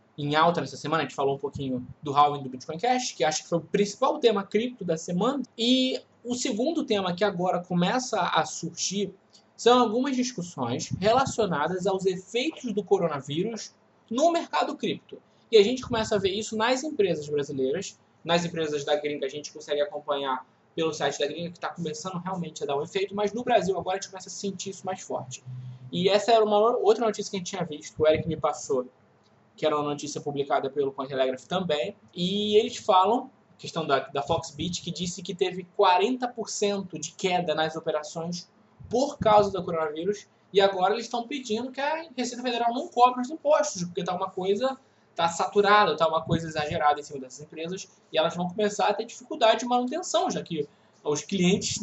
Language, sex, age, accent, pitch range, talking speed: Portuguese, male, 20-39, Brazilian, 155-215 Hz, 195 wpm